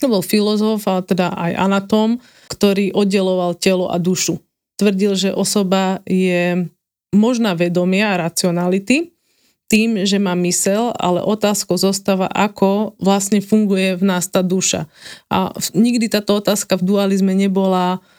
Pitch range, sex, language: 180-200 Hz, female, Slovak